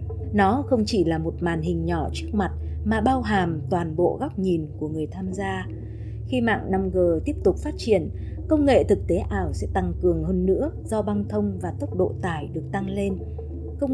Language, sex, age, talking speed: Vietnamese, female, 20-39, 210 wpm